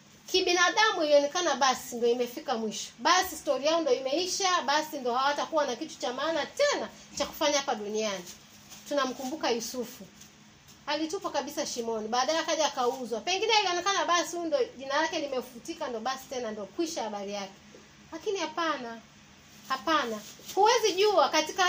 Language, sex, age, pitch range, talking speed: Swahili, female, 30-49, 265-345 Hz, 140 wpm